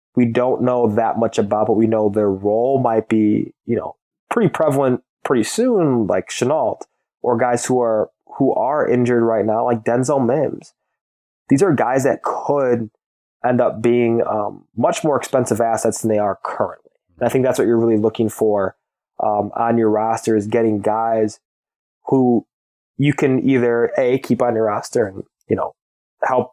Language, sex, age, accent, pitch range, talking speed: English, male, 20-39, American, 110-130 Hz, 180 wpm